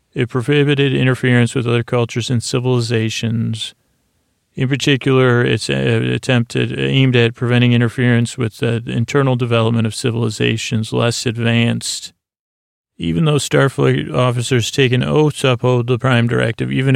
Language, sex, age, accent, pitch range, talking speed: English, male, 40-59, American, 115-130 Hz, 130 wpm